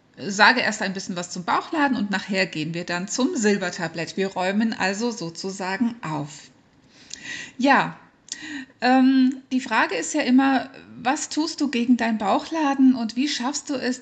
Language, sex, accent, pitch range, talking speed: German, female, German, 200-260 Hz, 160 wpm